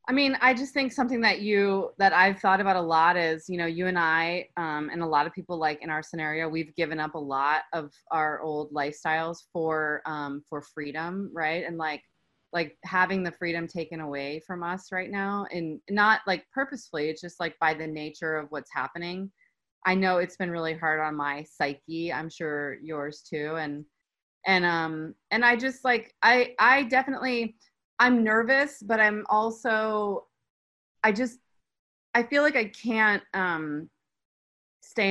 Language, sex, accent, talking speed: English, female, American, 180 wpm